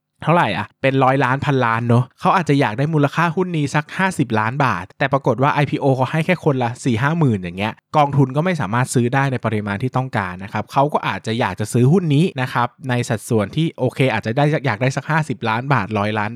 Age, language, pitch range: 20-39, Thai, 115-150 Hz